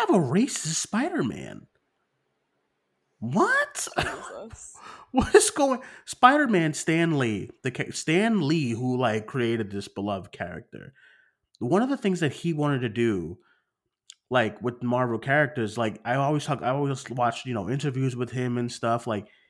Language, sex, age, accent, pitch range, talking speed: English, male, 30-49, American, 115-145 Hz, 150 wpm